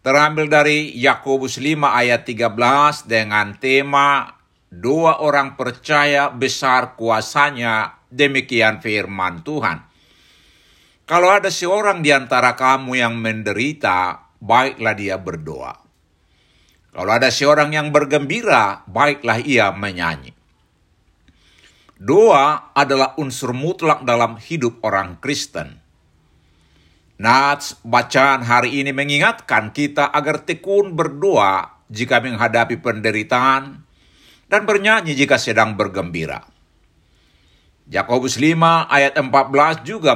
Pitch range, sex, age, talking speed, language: 105-150 Hz, male, 60-79, 95 wpm, Indonesian